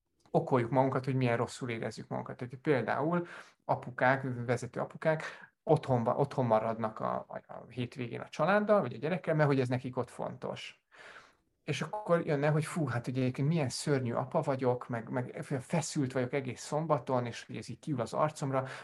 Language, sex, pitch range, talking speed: Hungarian, male, 125-155 Hz, 165 wpm